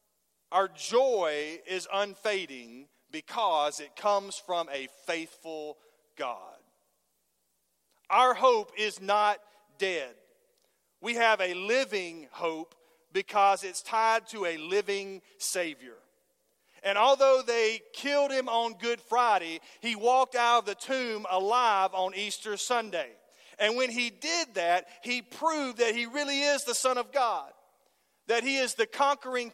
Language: English